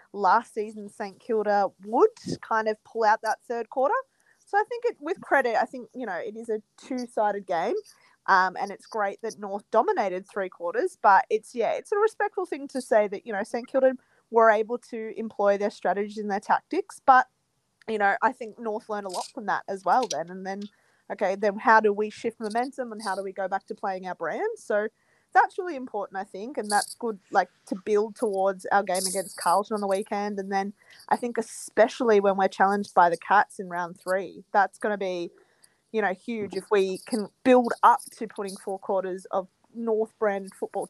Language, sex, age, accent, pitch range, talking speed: English, female, 20-39, Australian, 195-235 Hz, 215 wpm